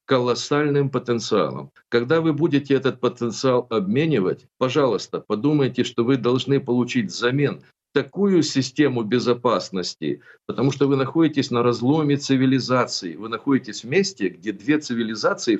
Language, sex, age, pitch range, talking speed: Russian, male, 50-69, 120-145 Hz, 125 wpm